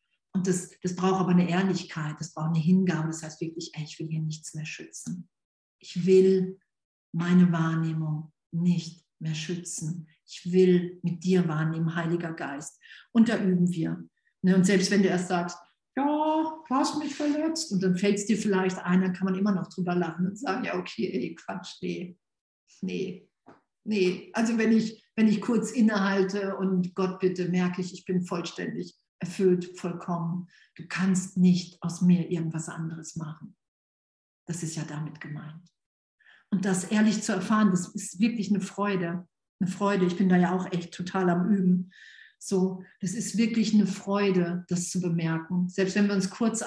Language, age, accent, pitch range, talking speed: German, 50-69, German, 175-205 Hz, 175 wpm